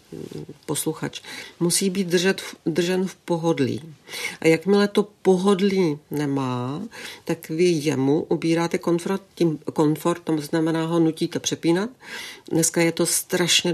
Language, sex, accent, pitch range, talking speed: Czech, female, native, 155-175 Hz, 120 wpm